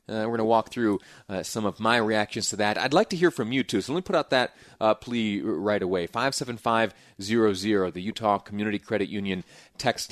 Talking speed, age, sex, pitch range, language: 250 wpm, 30-49, male, 100-125 Hz, English